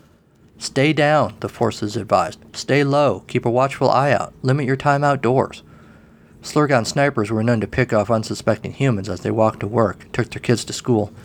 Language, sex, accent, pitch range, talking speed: English, male, American, 105-130 Hz, 185 wpm